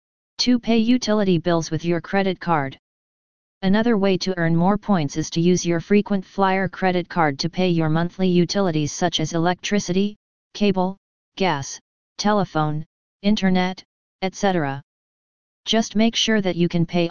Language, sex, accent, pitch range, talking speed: English, female, American, 165-195 Hz, 145 wpm